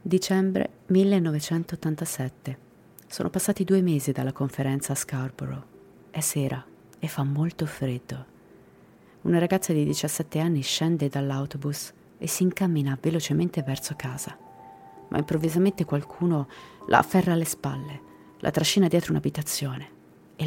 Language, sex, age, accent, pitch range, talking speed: Italian, female, 30-49, native, 140-175 Hz, 120 wpm